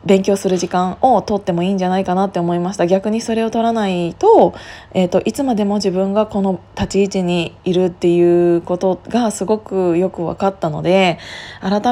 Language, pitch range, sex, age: Japanese, 180-220 Hz, female, 20-39